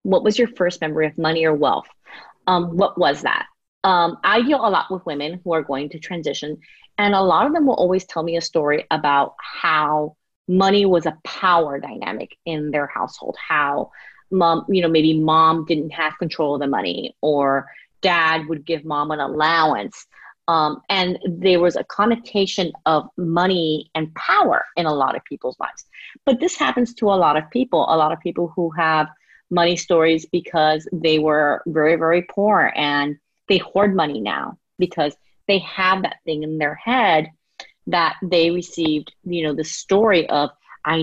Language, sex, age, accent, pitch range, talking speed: English, female, 30-49, American, 155-190 Hz, 185 wpm